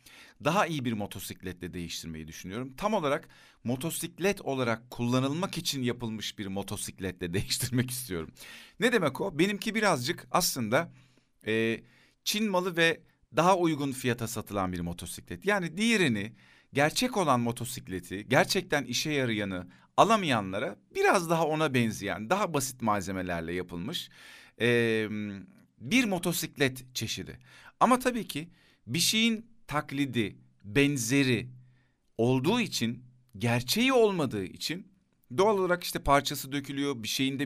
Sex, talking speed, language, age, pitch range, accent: male, 115 wpm, Turkish, 50-69, 110-165 Hz, native